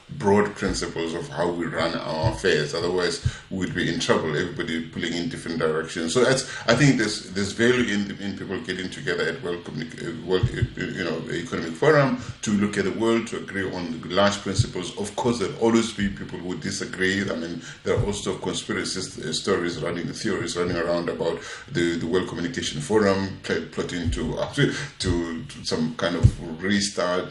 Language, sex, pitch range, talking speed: English, male, 90-110 Hz, 195 wpm